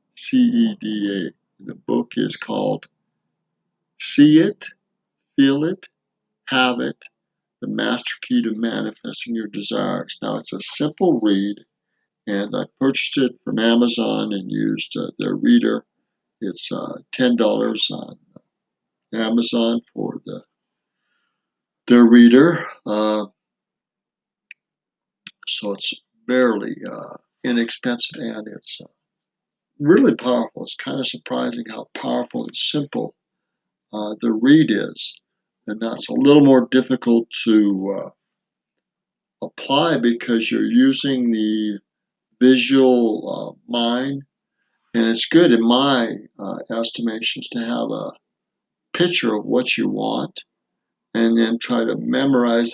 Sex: male